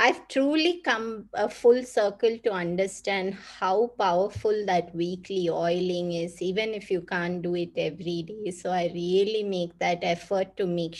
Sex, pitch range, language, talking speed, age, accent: female, 180-230 Hz, English, 165 wpm, 20-39, Indian